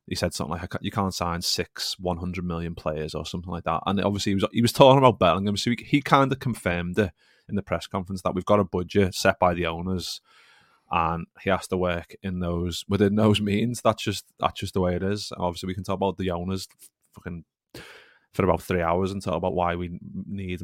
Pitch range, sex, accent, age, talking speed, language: 90-100 Hz, male, British, 20-39, 235 wpm, English